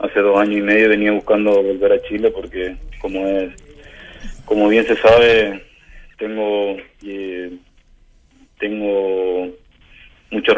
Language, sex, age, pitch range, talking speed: Spanish, male, 20-39, 100-120 Hz, 120 wpm